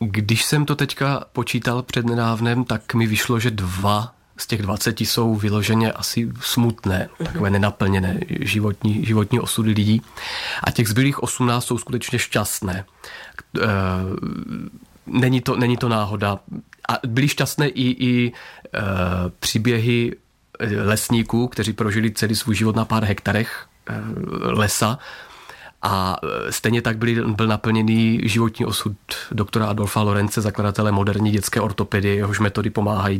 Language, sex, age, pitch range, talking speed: Czech, male, 30-49, 100-115 Hz, 130 wpm